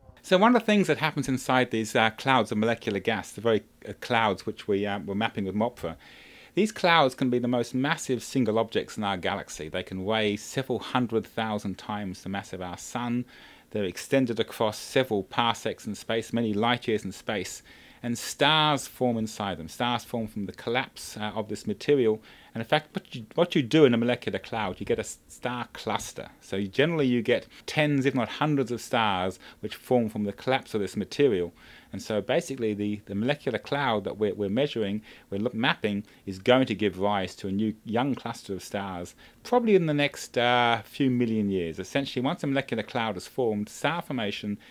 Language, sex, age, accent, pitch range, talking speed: English, male, 30-49, British, 100-130 Hz, 205 wpm